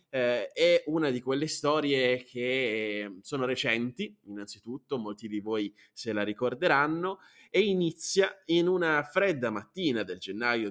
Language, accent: Italian, native